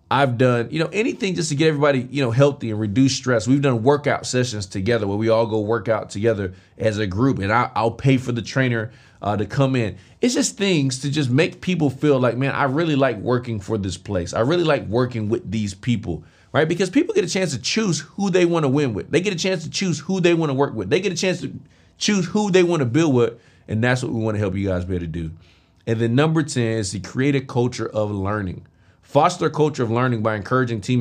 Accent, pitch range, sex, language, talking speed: American, 105-140 Hz, male, English, 255 wpm